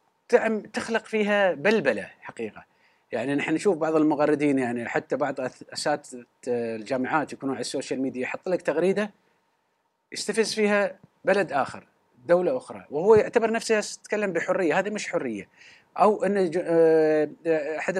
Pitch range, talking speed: 140-185 Hz, 125 wpm